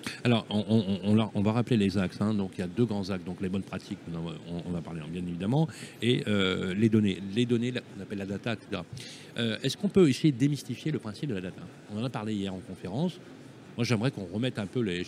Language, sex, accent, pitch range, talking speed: French, male, French, 100-125 Hz, 275 wpm